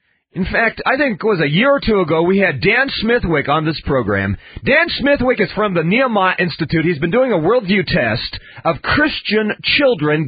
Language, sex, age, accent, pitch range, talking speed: English, male, 40-59, American, 175-245 Hz, 200 wpm